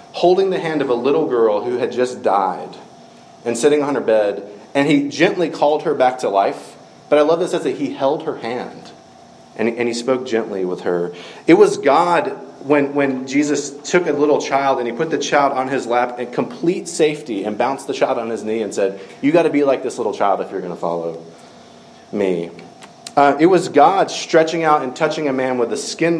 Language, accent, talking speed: English, American, 225 wpm